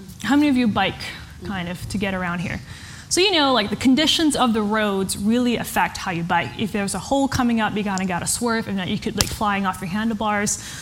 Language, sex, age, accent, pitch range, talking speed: English, female, 10-29, American, 195-245 Hz, 255 wpm